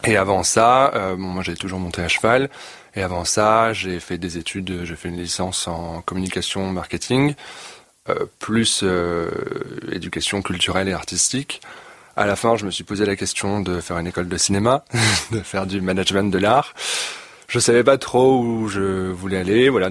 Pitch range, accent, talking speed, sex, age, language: 85-100 Hz, French, 185 wpm, male, 20-39, French